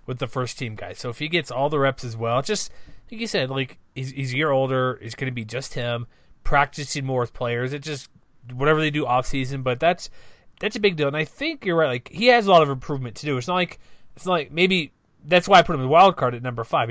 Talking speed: 280 wpm